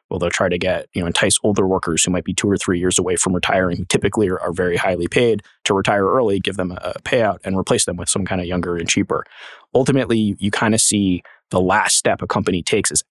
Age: 20-39